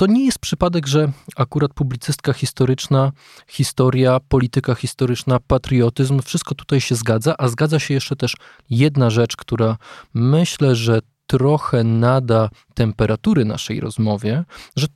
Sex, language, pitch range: male, Polish, 115-140 Hz